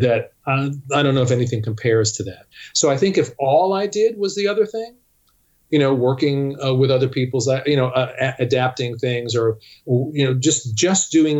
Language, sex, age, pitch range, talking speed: English, male, 40-59, 115-140 Hz, 205 wpm